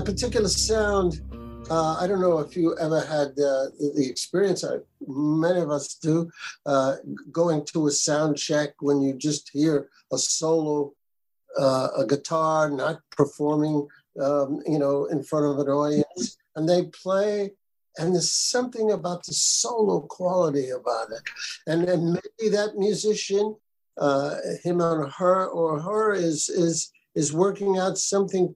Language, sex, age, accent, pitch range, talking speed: English, male, 60-79, American, 150-185 Hz, 150 wpm